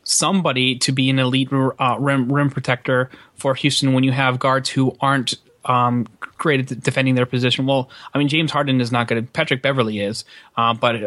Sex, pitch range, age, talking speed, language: male, 115-135 Hz, 30-49, 190 wpm, English